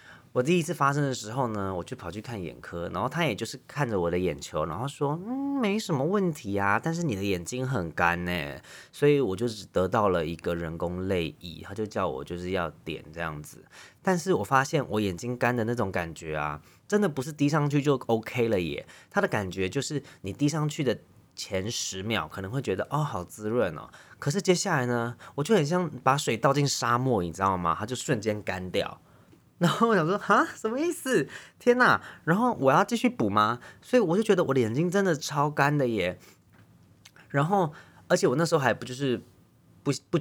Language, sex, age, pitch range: Chinese, male, 20-39, 95-145 Hz